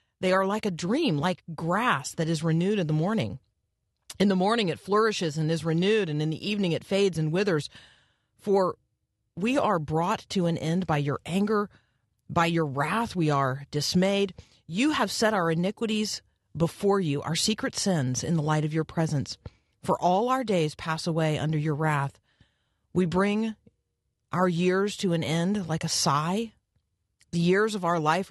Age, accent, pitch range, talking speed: 40-59, American, 145-190 Hz, 180 wpm